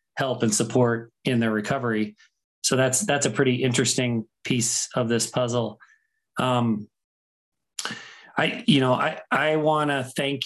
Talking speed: 140 wpm